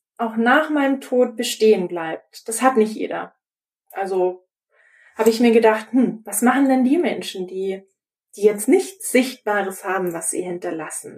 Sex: female